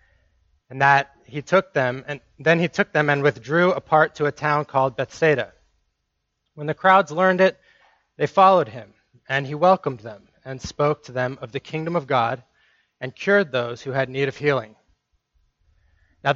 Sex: male